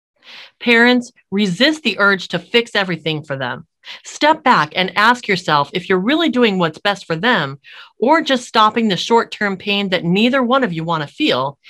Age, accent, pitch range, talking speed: 40-59, American, 160-230 Hz, 185 wpm